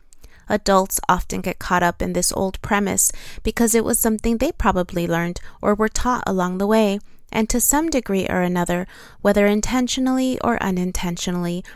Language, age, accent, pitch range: English, 20-39, American, 180-225 Hz